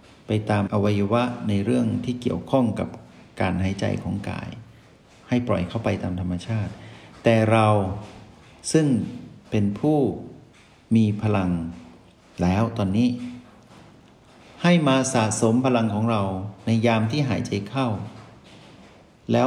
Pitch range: 100-120 Hz